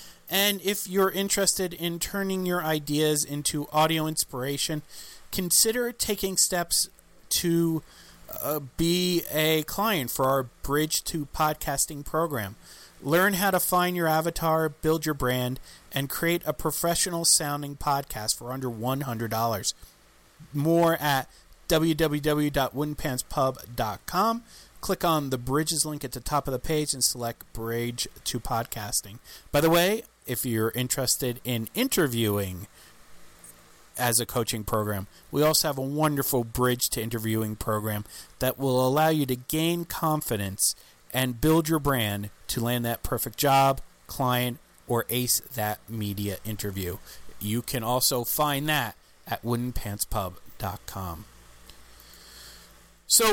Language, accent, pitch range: English, American, 115-160 Hz